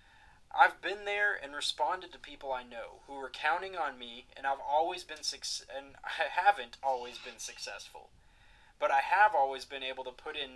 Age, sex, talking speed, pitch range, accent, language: 20-39, male, 195 wpm, 120-145 Hz, American, English